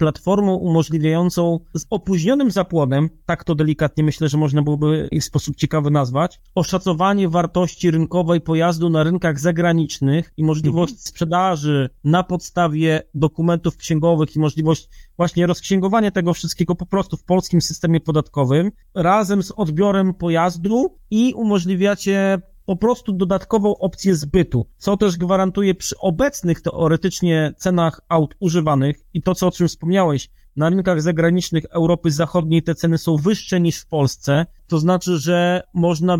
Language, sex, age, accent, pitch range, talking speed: Polish, male, 30-49, native, 155-185 Hz, 140 wpm